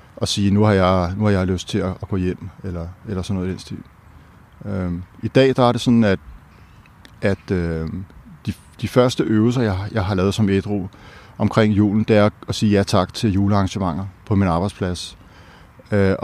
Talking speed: 190 wpm